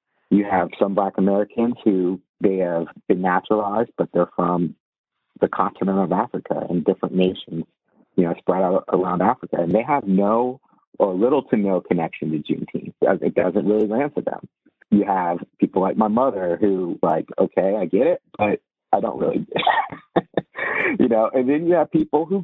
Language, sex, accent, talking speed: English, male, American, 180 wpm